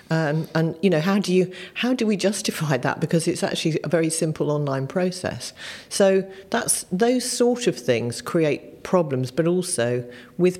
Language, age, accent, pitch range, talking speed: English, 40-59, British, 135-180 Hz, 175 wpm